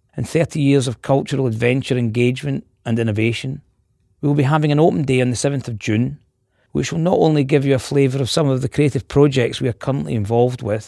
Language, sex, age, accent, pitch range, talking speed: English, male, 40-59, British, 115-140 Hz, 220 wpm